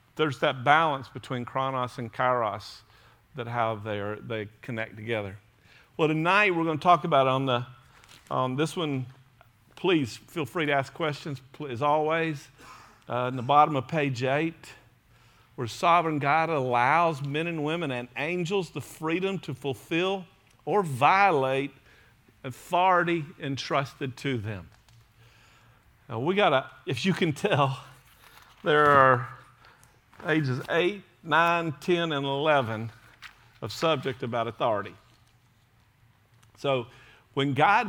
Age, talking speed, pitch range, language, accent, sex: 50-69, 130 wpm, 115-160 Hz, English, American, male